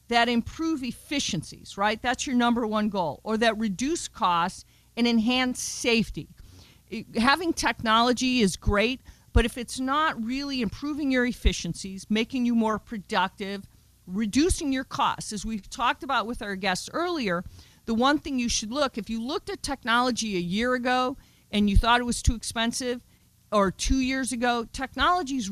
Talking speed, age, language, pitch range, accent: 165 wpm, 50-69, English, 215-265 Hz, American